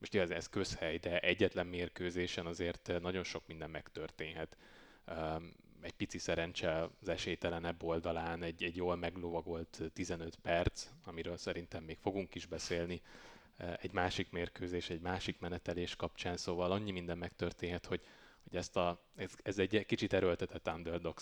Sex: male